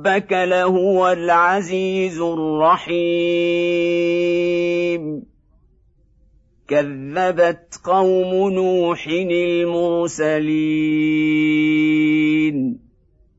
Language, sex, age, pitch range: Arabic, male, 50-69, 155-180 Hz